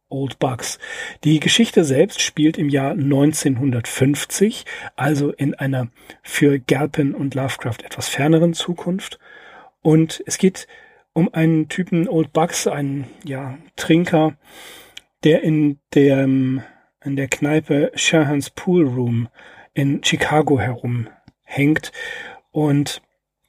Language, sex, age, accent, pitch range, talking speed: German, male, 40-59, German, 145-170 Hz, 110 wpm